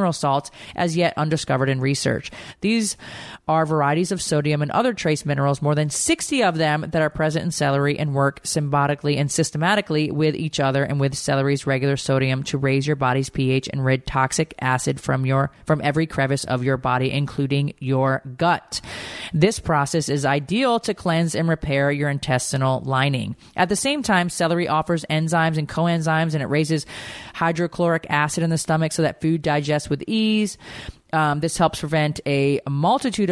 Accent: American